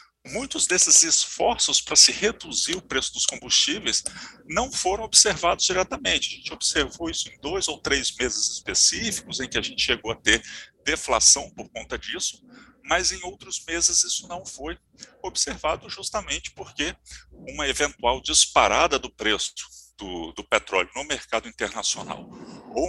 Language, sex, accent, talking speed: Portuguese, male, Brazilian, 150 wpm